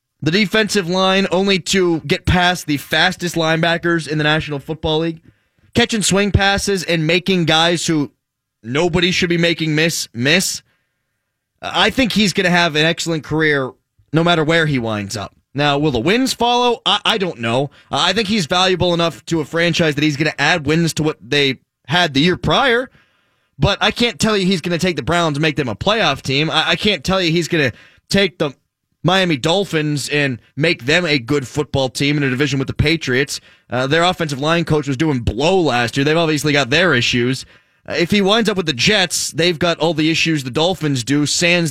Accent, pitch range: American, 145-185 Hz